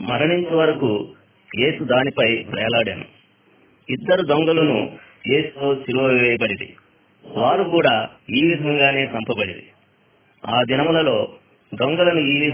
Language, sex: Hindi, male